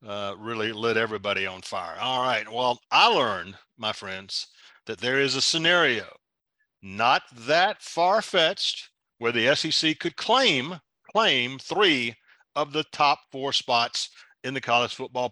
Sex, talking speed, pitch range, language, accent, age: male, 145 wpm, 115-170 Hz, English, American, 50-69